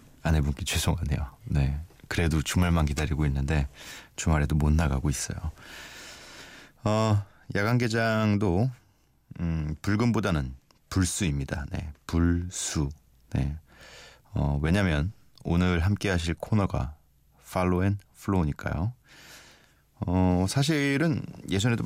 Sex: male